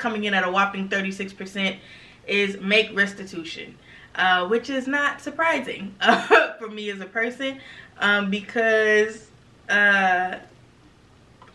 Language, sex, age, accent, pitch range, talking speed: English, female, 20-39, American, 180-225 Hz, 115 wpm